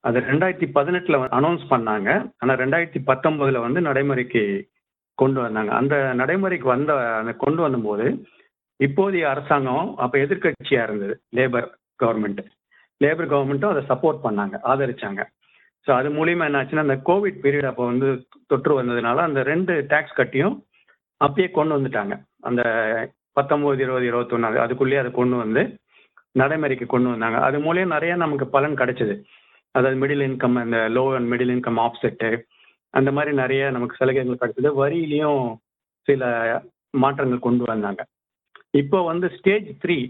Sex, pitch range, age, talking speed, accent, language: male, 120-150 Hz, 50-69, 135 wpm, native, Tamil